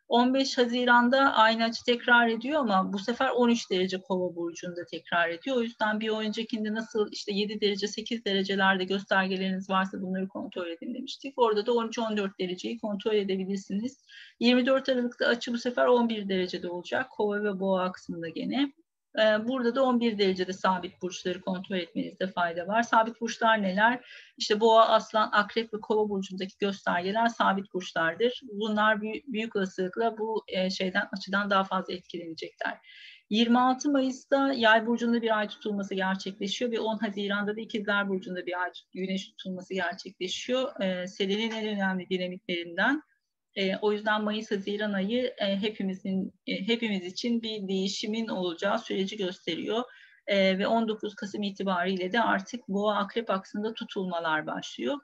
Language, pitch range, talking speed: Turkish, 190-235 Hz, 145 wpm